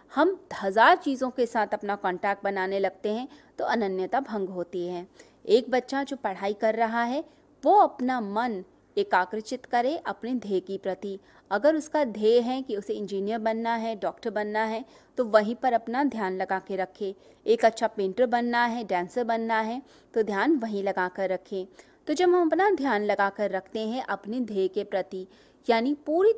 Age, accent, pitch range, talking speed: 30-49, native, 205-270 Hz, 180 wpm